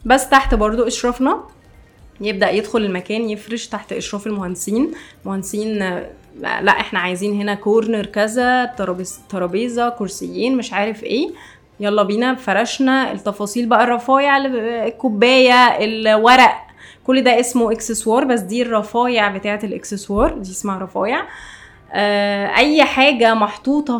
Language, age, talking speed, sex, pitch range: Arabic, 20-39, 115 wpm, female, 205-250 Hz